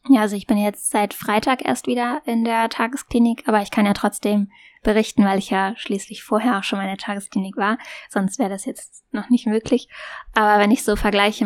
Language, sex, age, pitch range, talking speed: German, female, 10-29, 200-245 Hz, 220 wpm